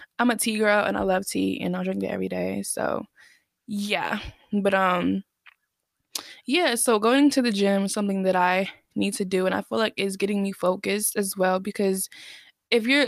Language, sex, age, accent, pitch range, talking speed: English, female, 20-39, American, 185-220 Hz, 200 wpm